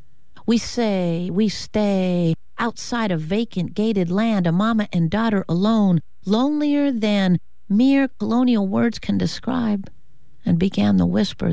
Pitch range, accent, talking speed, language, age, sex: 165-220 Hz, American, 130 wpm, English, 50-69, female